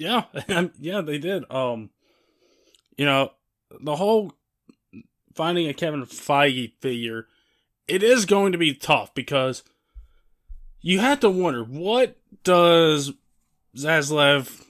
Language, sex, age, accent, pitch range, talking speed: English, male, 20-39, American, 125-170 Hz, 115 wpm